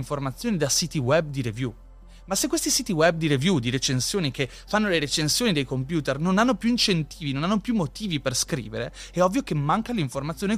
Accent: native